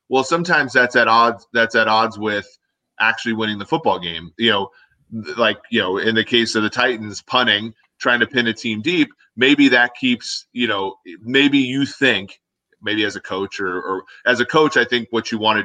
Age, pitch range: 30-49, 105-125 Hz